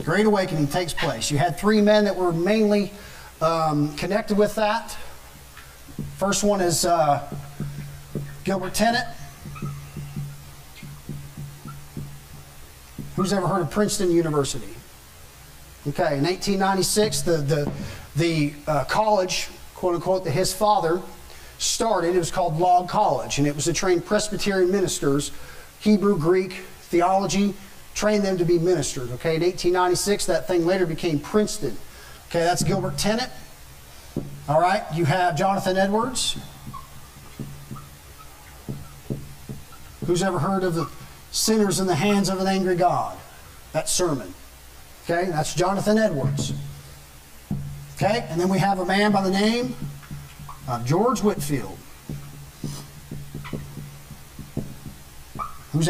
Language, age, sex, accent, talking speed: English, 40-59, male, American, 120 wpm